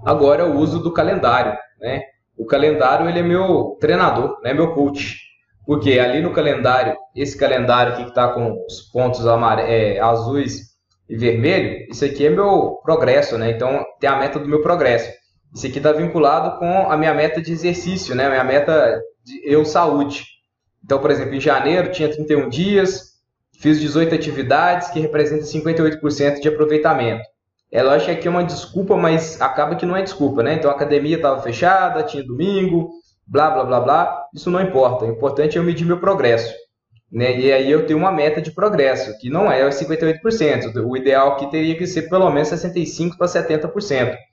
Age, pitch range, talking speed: 20-39, 125-165 Hz, 185 wpm